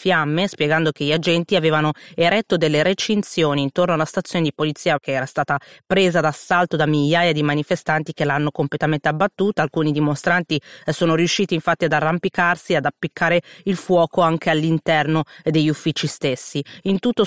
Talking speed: 155 wpm